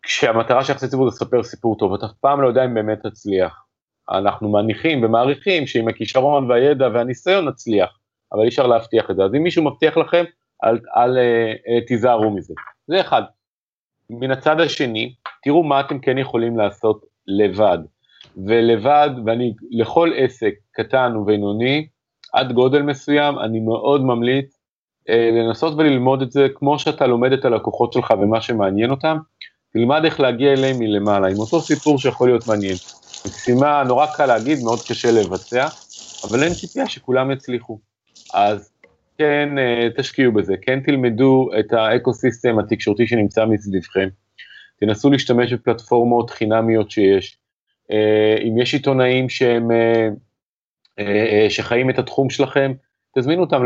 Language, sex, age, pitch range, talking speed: Hebrew, male, 40-59, 110-135 Hz, 140 wpm